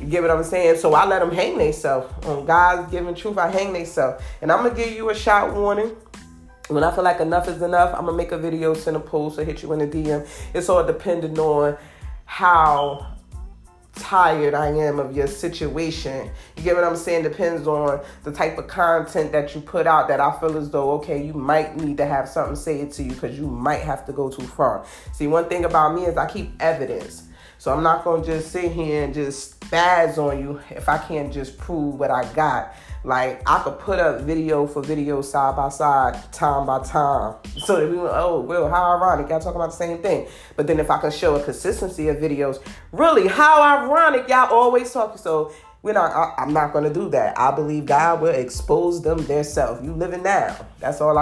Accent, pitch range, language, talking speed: American, 145-175 Hz, English, 230 wpm